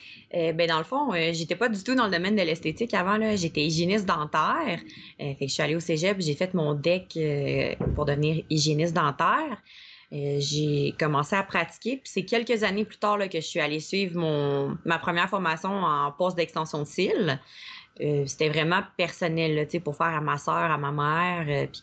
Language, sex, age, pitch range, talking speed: French, female, 20-39, 155-200 Hz, 215 wpm